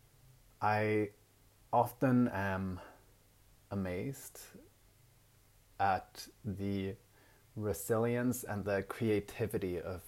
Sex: male